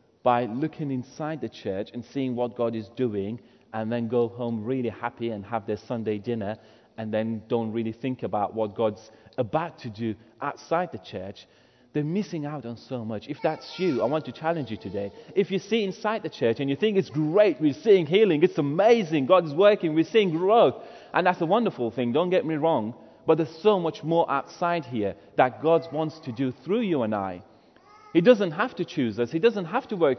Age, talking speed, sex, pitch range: 30-49, 215 wpm, male, 120-200 Hz